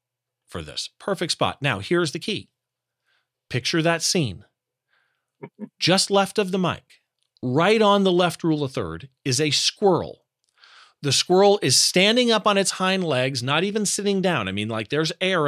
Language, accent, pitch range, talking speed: English, American, 130-200 Hz, 170 wpm